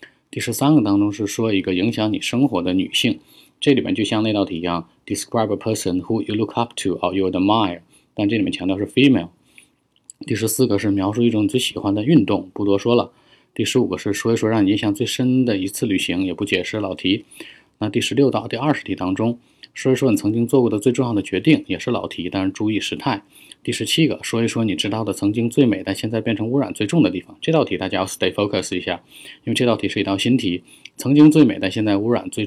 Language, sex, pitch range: Chinese, male, 100-120 Hz